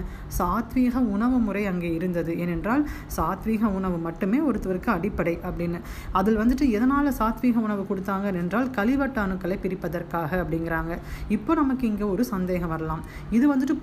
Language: Tamil